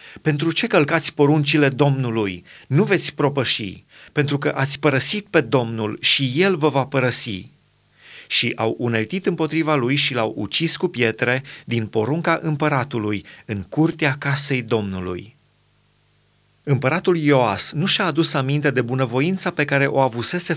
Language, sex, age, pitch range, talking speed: Romanian, male, 30-49, 120-155 Hz, 140 wpm